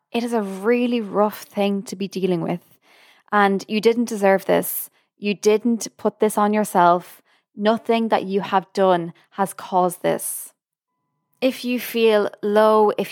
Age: 20-39